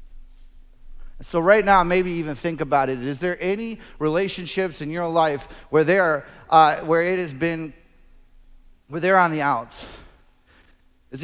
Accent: American